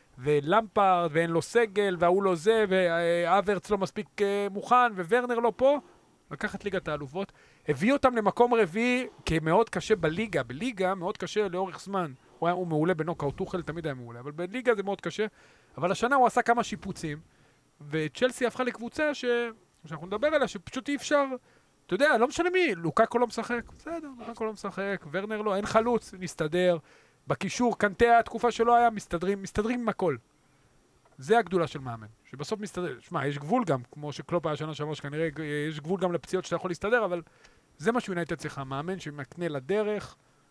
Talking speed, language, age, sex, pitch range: 175 wpm, Hebrew, 40-59, male, 165-225 Hz